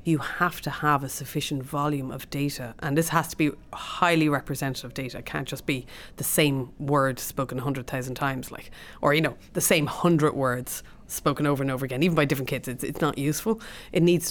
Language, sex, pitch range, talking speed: English, female, 135-165 Hz, 220 wpm